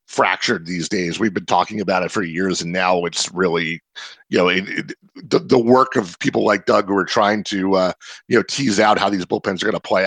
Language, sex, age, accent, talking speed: English, male, 40-59, American, 245 wpm